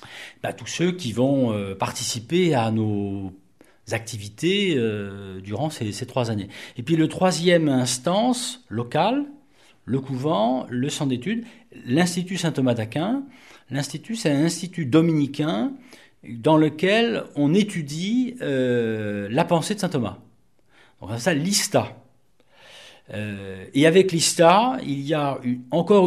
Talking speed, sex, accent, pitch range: 125 wpm, male, French, 115-180 Hz